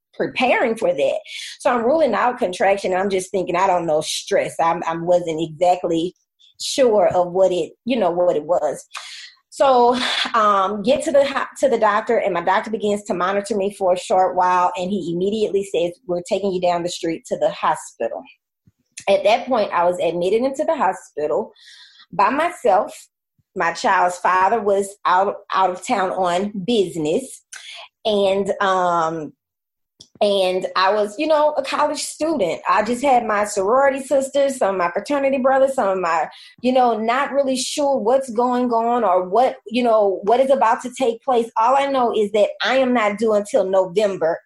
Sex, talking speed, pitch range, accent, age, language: female, 180 wpm, 180-255 Hz, American, 20-39, English